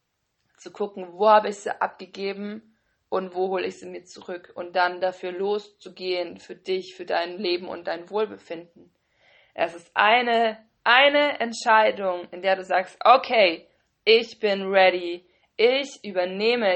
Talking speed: 145 wpm